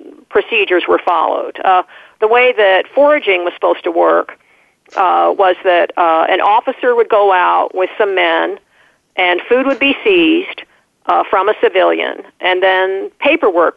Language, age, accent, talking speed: English, 50-69, American, 155 wpm